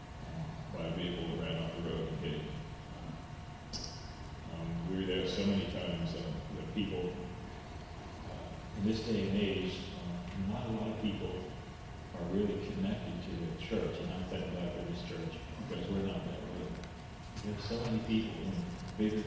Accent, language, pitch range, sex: American, English, 90-100 Hz, male